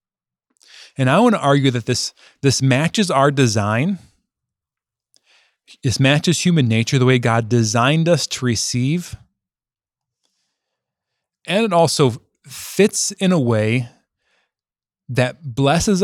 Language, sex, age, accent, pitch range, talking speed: English, male, 20-39, American, 120-160 Hz, 115 wpm